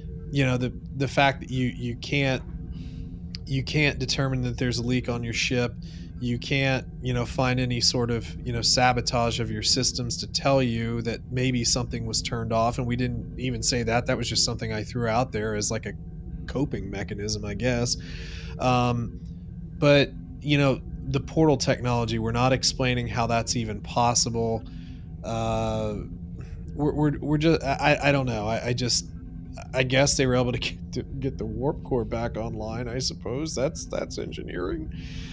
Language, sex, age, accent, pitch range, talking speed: English, male, 20-39, American, 110-130 Hz, 180 wpm